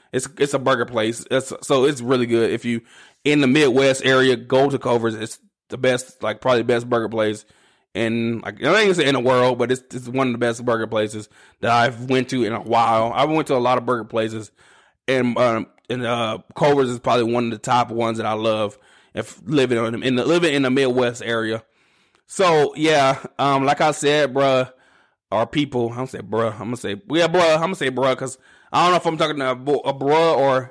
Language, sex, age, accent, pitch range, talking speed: English, male, 20-39, American, 120-150 Hz, 230 wpm